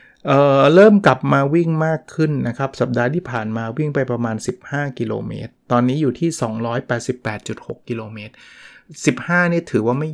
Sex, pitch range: male, 120-150 Hz